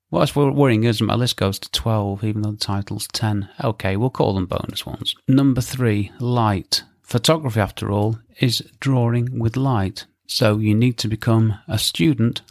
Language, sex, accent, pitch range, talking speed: English, male, British, 105-120 Hz, 180 wpm